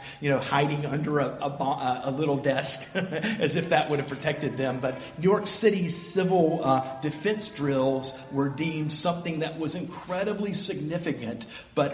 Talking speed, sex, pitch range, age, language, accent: 160 wpm, male, 125-155 Hz, 50-69, English, American